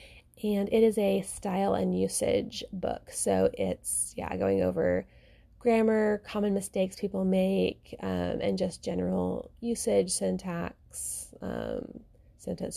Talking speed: 120 wpm